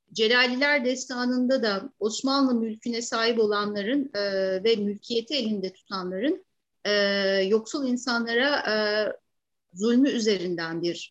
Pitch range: 185-245 Hz